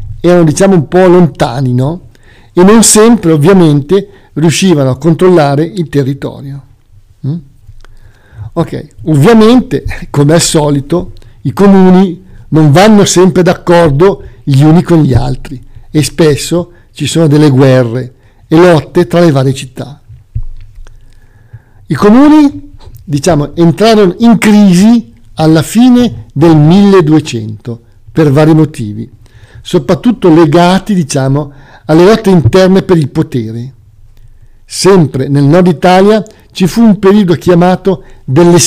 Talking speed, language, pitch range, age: 120 wpm, Italian, 125-180 Hz, 50-69